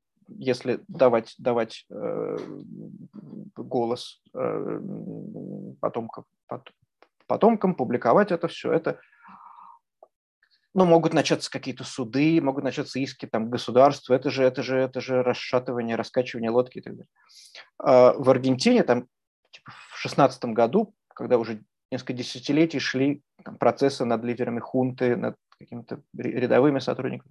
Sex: male